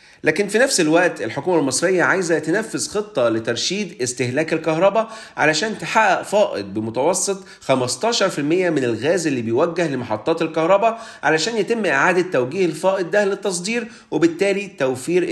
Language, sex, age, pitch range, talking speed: Arabic, male, 40-59, 140-205 Hz, 125 wpm